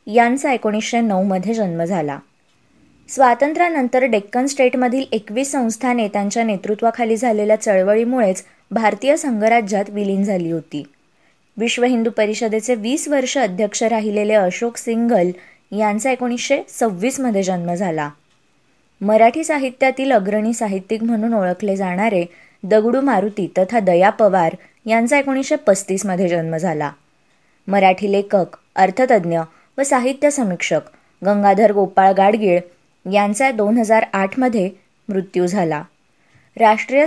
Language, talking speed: Marathi, 110 wpm